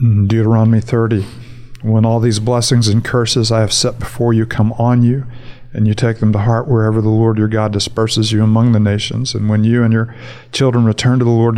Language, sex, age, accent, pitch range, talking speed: English, male, 50-69, American, 110-120 Hz, 220 wpm